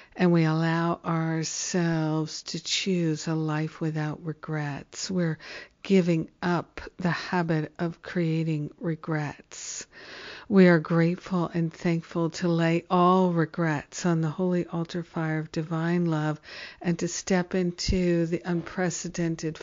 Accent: American